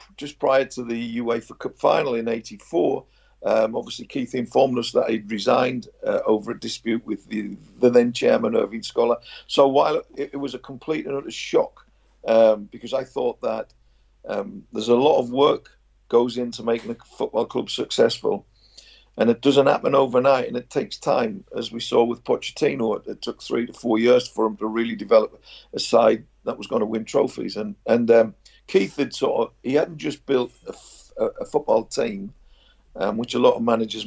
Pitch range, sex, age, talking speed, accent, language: 115-135 Hz, male, 50-69, 195 wpm, British, English